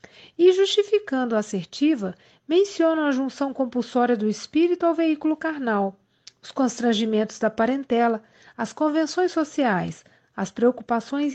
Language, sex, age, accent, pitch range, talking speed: Portuguese, female, 40-59, Brazilian, 220-315 Hz, 115 wpm